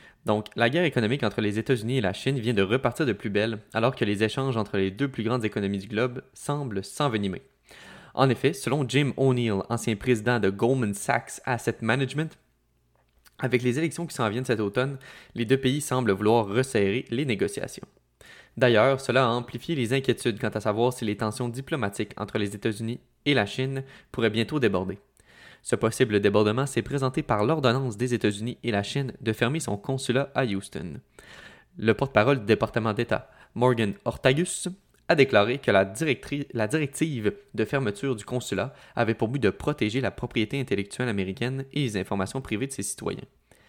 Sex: male